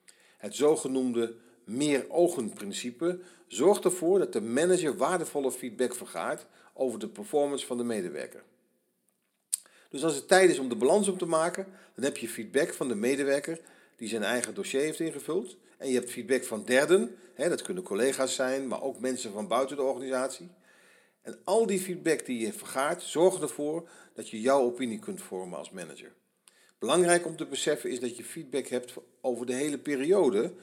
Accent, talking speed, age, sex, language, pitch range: Dutch, 170 wpm, 50-69, male, Dutch, 120-170 Hz